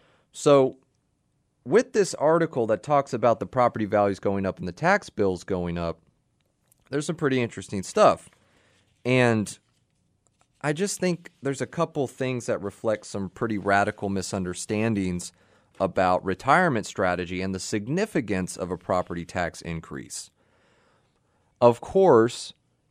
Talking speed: 130 wpm